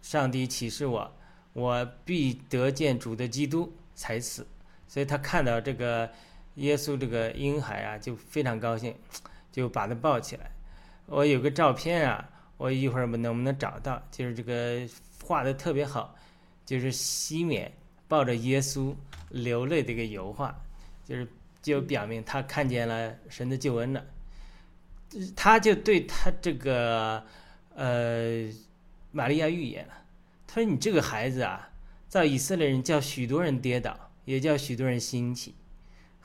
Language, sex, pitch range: Chinese, male, 120-150 Hz